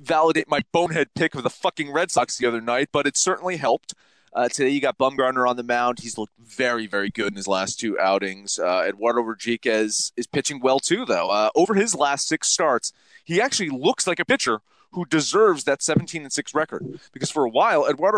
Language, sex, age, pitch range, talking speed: English, male, 30-49, 110-145 Hz, 215 wpm